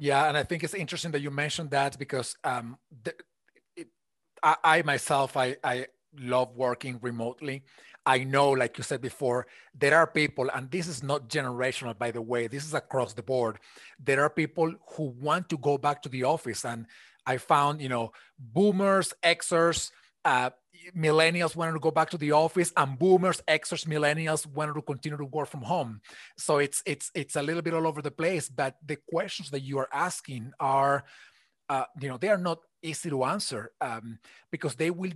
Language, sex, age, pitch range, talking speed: English, male, 30-49, 140-170 Hz, 190 wpm